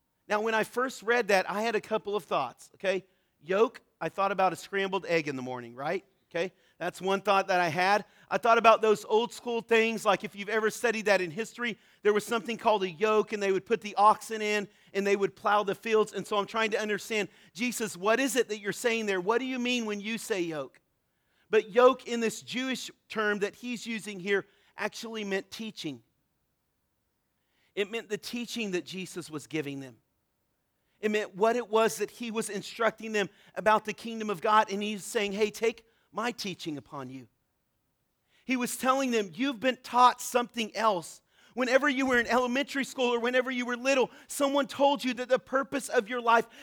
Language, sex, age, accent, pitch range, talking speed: English, male, 40-59, American, 190-240 Hz, 210 wpm